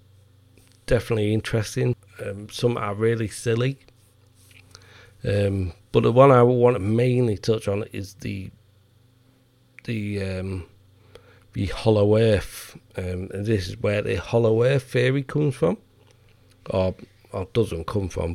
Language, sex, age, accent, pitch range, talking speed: English, male, 40-59, British, 100-120 Hz, 130 wpm